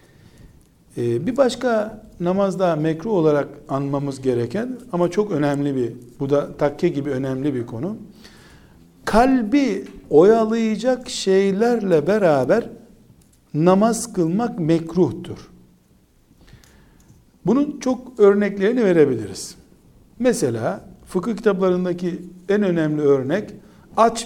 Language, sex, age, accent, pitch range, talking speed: Turkish, male, 60-79, native, 145-205 Hz, 90 wpm